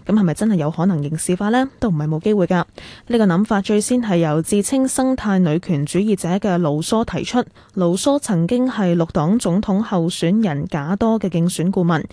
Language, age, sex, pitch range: Chinese, 10-29, female, 165-215 Hz